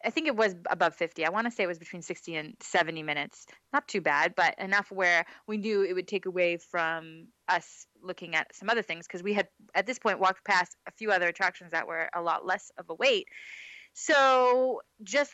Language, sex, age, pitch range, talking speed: English, female, 20-39, 180-230 Hz, 225 wpm